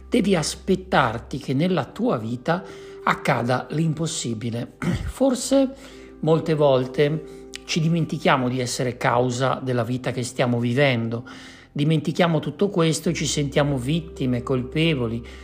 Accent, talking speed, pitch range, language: native, 115 wpm, 130-180 Hz, Italian